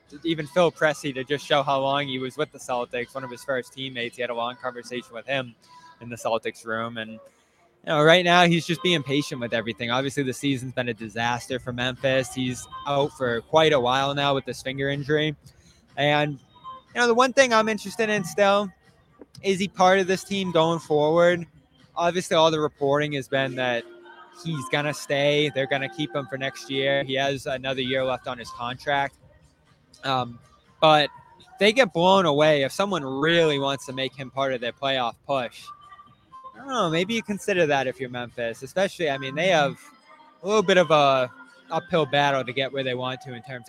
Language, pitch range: English, 125-160 Hz